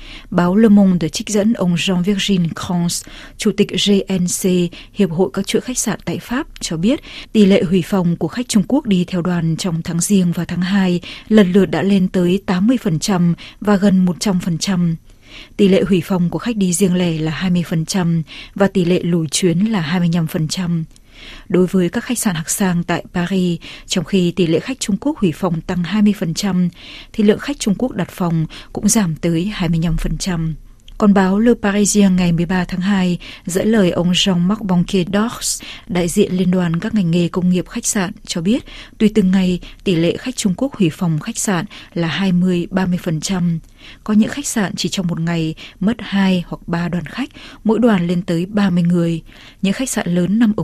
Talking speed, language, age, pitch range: 195 wpm, Vietnamese, 20-39, 175-205 Hz